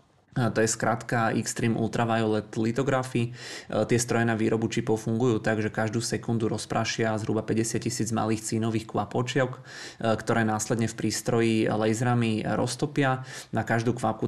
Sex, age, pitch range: male, 20-39, 110-115 Hz